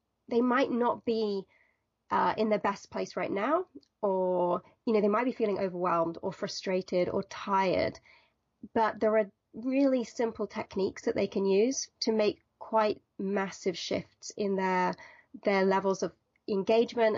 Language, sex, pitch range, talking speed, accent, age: English, female, 195-235 Hz, 155 wpm, British, 30-49